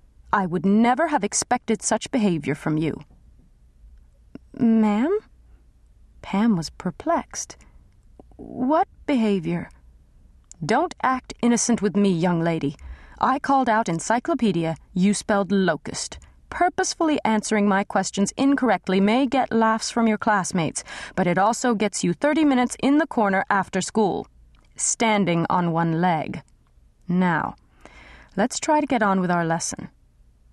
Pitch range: 165-225 Hz